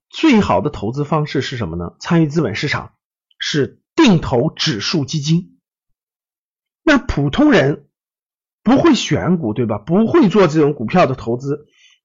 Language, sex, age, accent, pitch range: Chinese, male, 50-69, native, 145-230 Hz